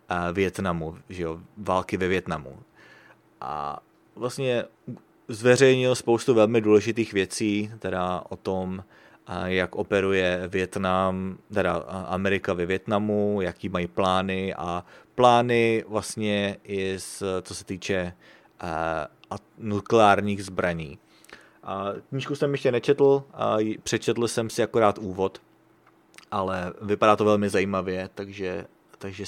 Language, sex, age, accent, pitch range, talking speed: English, male, 30-49, Czech, 95-115 Hz, 110 wpm